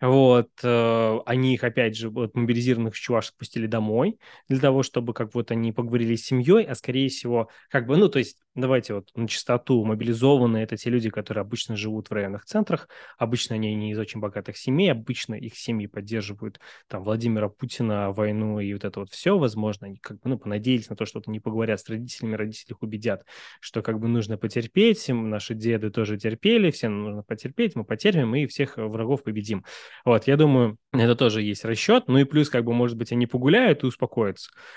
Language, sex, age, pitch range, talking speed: Russian, male, 20-39, 110-135 Hz, 195 wpm